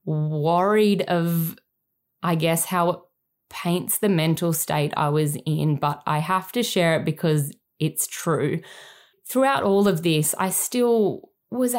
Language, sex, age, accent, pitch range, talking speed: English, female, 10-29, Australian, 160-205 Hz, 150 wpm